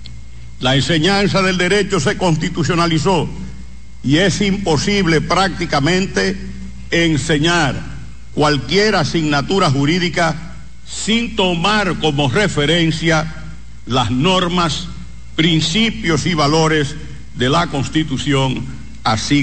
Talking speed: 85 wpm